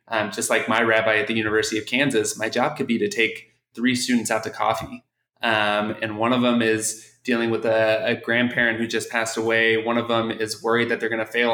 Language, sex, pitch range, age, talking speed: English, male, 110-125 Hz, 20-39, 240 wpm